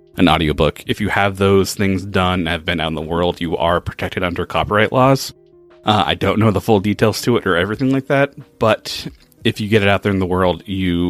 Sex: male